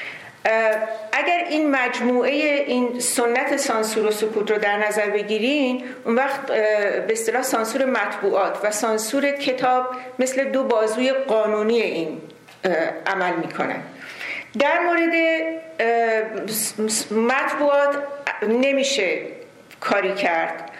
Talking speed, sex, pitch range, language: 100 wpm, female, 215-260 Hz, Persian